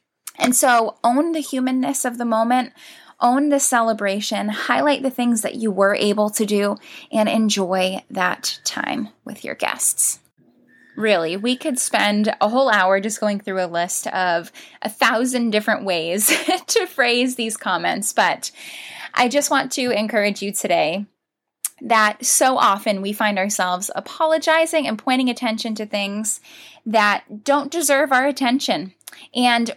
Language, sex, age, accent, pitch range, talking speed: English, female, 10-29, American, 210-265 Hz, 150 wpm